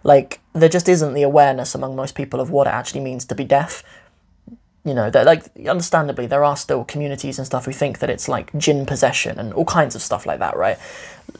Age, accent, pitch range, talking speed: 20-39, British, 135-155 Hz, 220 wpm